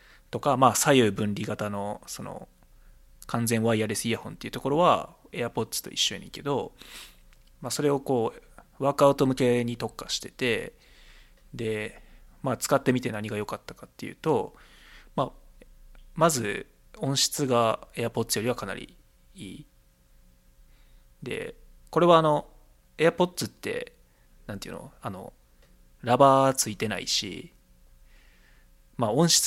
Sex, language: male, Japanese